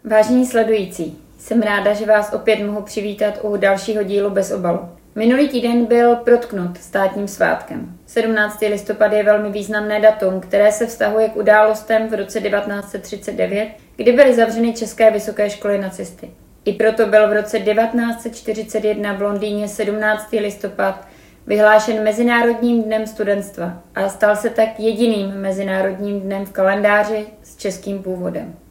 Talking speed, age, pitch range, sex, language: 140 wpm, 30-49, 195-225 Hz, female, Czech